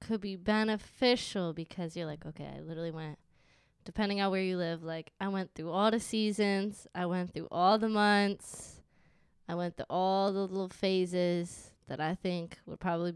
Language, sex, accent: English, female, American